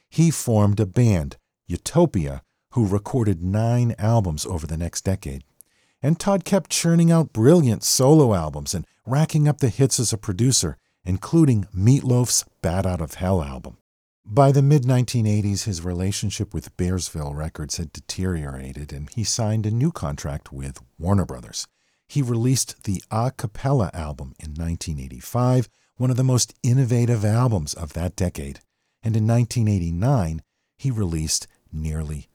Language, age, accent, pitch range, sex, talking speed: English, 50-69, American, 90-125 Hz, male, 145 wpm